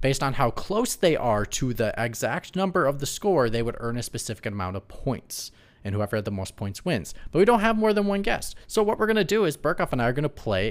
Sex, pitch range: male, 105-145 Hz